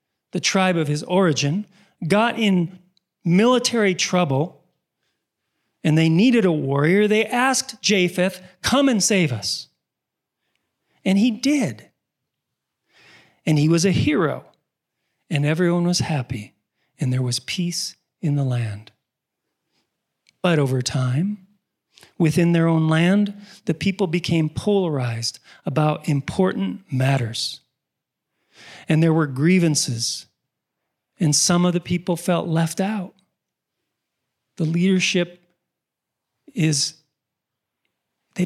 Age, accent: 40-59, American